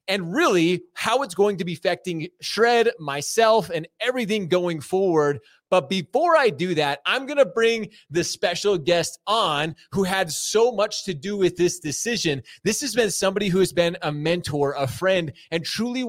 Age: 30-49